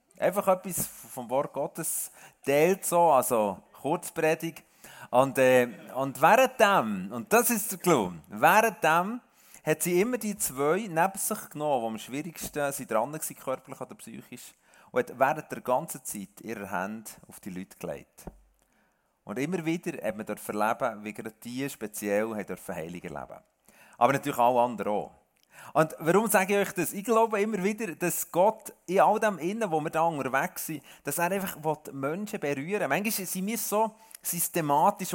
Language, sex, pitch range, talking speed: German, male, 140-200 Hz, 170 wpm